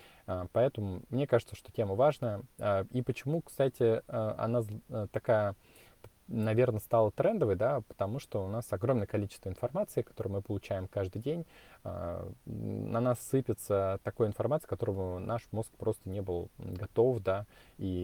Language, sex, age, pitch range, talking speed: Russian, male, 20-39, 95-120 Hz, 140 wpm